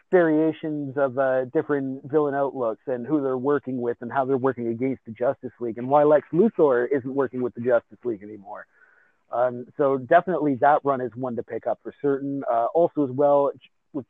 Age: 30-49